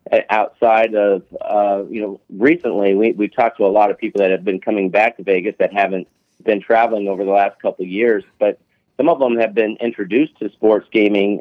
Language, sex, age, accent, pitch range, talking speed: English, male, 40-59, American, 100-115 Hz, 215 wpm